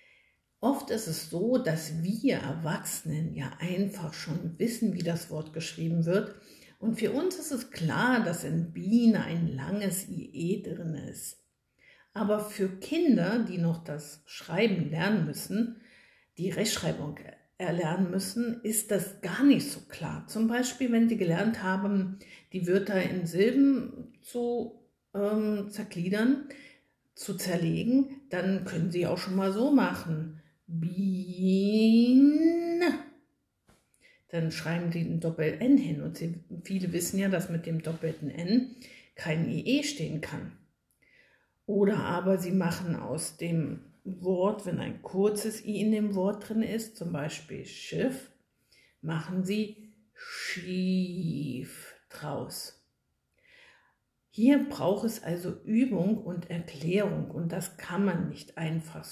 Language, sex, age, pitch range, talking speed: German, female, 50-69, 170-225 Hz, 130 wpm